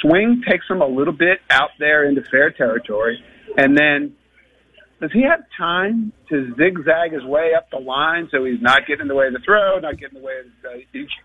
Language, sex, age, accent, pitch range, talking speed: English, male, 50-69, American, 145-245 Hz, 220 wpm